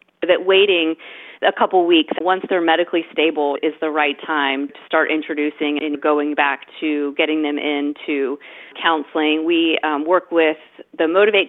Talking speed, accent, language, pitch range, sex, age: 155 wpm, American, English, 150-170 Hz, female, 30-49